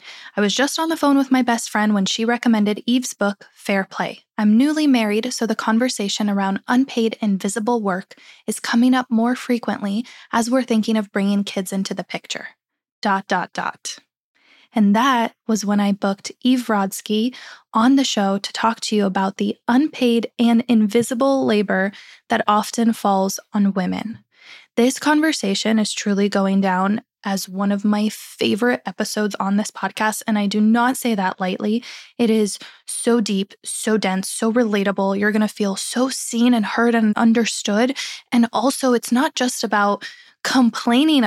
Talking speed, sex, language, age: 170 wpm, female, English, 10-29